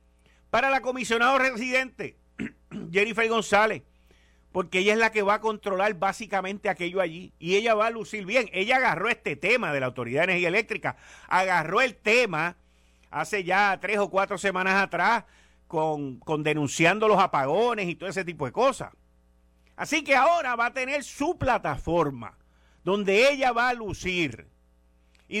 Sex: male